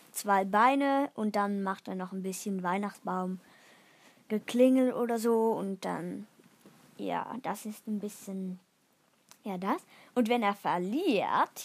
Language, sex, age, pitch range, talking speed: German, female, 20-39, 200-260 Hz, 135 wpm